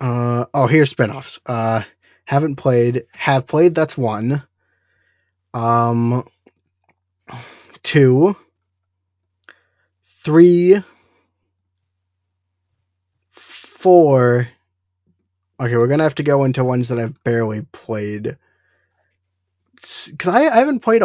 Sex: male